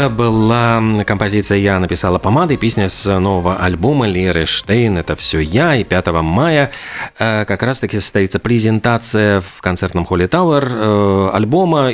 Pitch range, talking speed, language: 95-125 Hz, 150 wpm, Russian